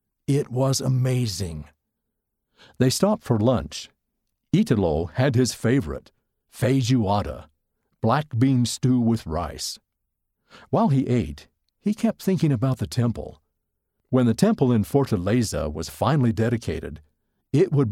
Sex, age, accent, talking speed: male, 60-79, American, 120 wpm